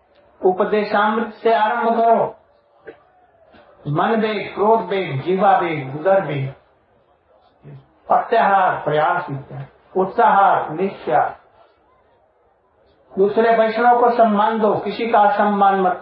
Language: Hindi